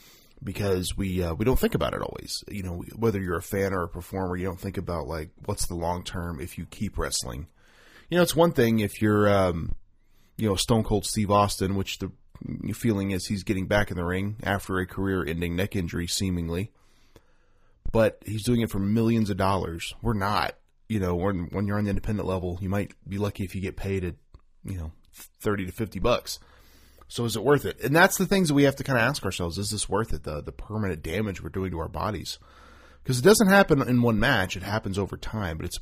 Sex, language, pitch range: male, English, 90-115 Hz